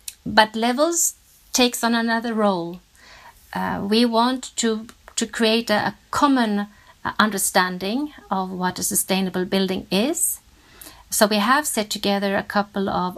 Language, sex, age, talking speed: English, female, 50-69, 130 wpm